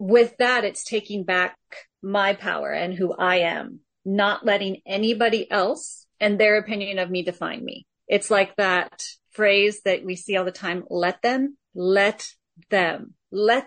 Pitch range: 190-235 Hz